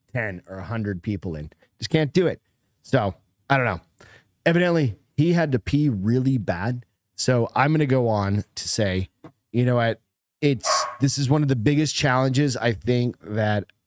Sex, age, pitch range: male, 30-49, 100-140 Hz